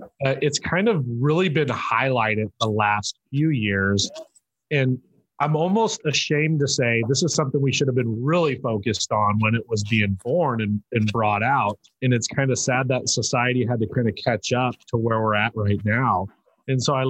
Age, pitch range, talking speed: 30-49, 110-135 Hz, 205 wpm